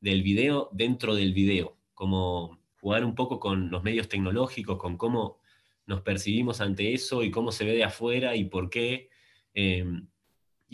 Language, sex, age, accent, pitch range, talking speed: Spanish, male, 20-39, Argentinian, 95-115 Hz, 160 wpm